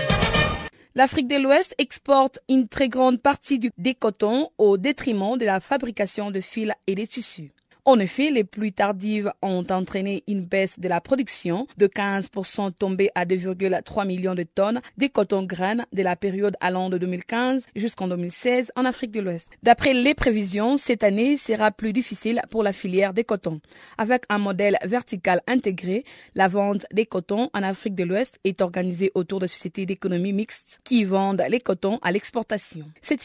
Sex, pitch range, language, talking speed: female, 195-245 Hz, French, 175 wpm